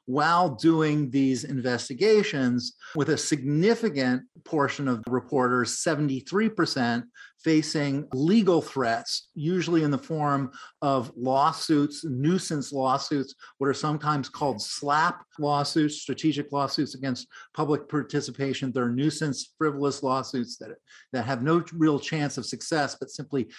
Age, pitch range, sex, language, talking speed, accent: 50-69, 130-160 Hz, male, English, 120 wpm, American